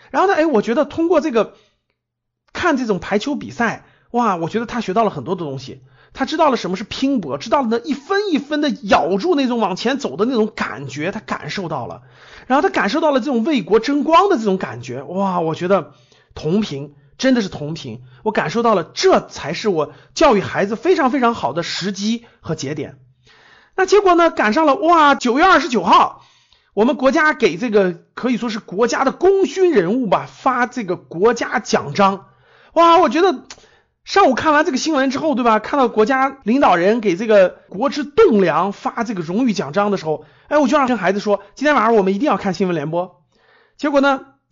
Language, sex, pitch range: Chinese, male, 185-270 Hz